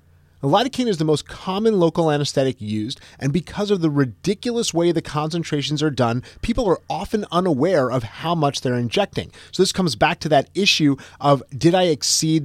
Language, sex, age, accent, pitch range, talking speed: English, male, 30-49, American, 120-170 Hz, 185 wpm